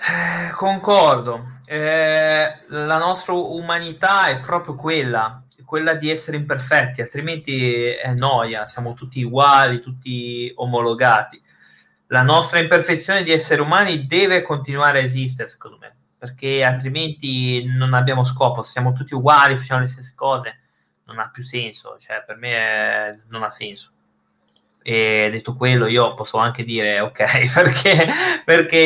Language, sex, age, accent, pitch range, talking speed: Italian, male, 20-39, native, 125-150 Hz, 130 wpm